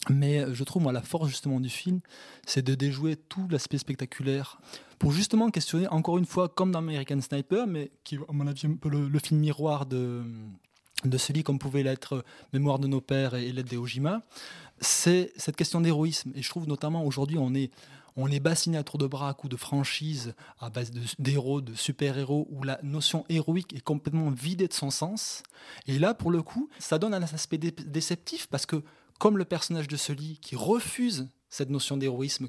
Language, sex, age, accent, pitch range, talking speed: French, male, 20-39, French, 135-165 Hz, 205 wpm